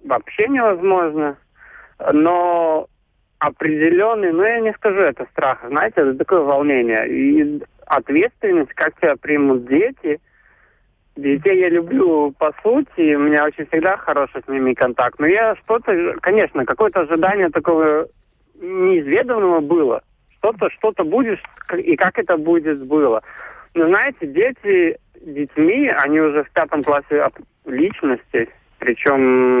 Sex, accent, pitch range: male, native, 140-220 Hz